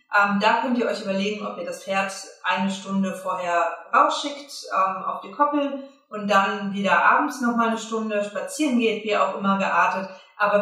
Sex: female